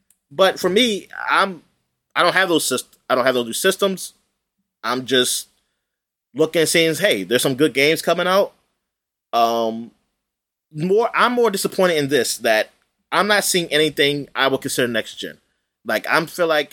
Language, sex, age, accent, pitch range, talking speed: English, male, 20-39, American, 125-190 Hz, 175 wpm